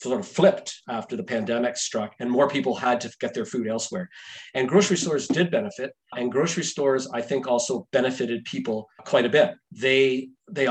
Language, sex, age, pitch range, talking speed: English, male, 40-59, 125-180 Hz, 190 wpm